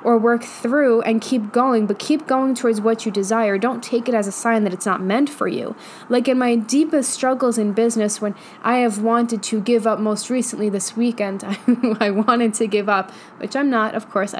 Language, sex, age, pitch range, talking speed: English, female, 10-29, 205-240 Hz, 220 wpm